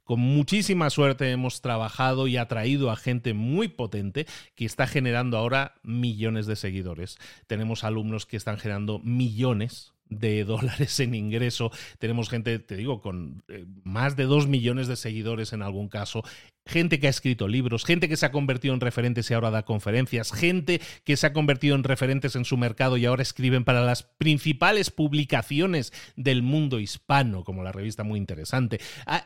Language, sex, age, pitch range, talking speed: Spanish, male, 40-59, 110-140 Hz, 175 wpm